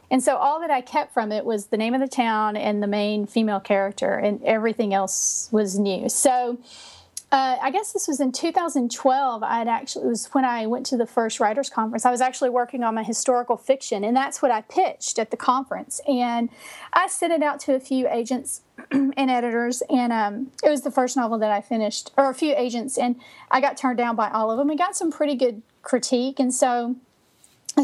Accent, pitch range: American, 220-270 Hz